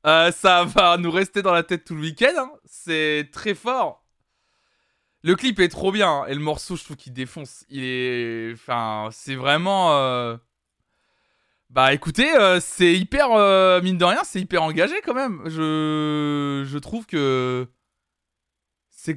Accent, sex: French, male